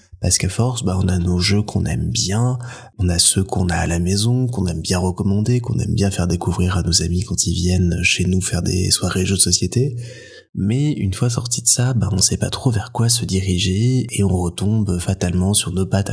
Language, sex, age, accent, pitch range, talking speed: French, male, 20-39, French, 95-120 Hz, 240 wpm